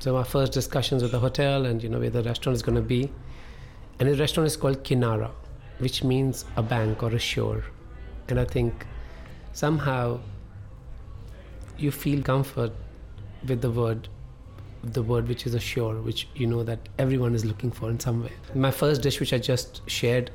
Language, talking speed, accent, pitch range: English, 190 wpm, Indian, 115-140 Hz